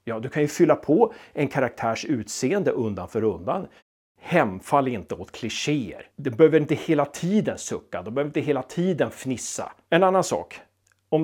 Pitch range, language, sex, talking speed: 120-190 Hz, Swedish, male, 170 wpm